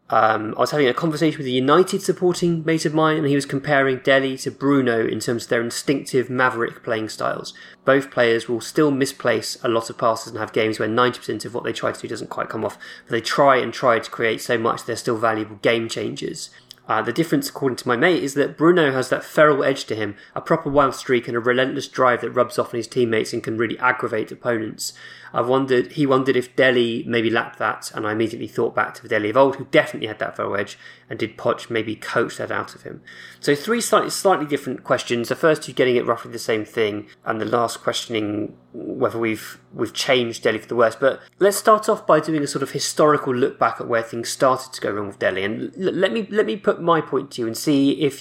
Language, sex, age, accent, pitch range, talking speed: English, male, 20-39, British, 115-145 Hz, 245 wpm